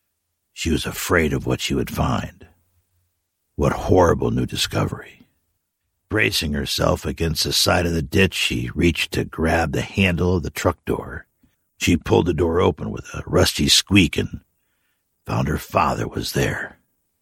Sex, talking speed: male, 155 wpm